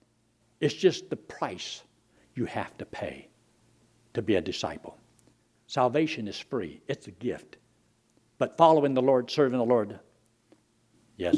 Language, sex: English, male